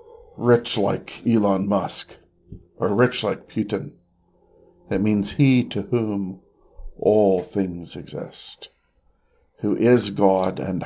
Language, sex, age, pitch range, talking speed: English, male, 50-69, 90-105 Hz, 110 wpm